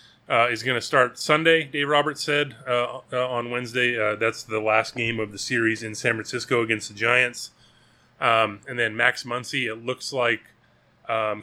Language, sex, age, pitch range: English, male, 30-49, 110-130 Hz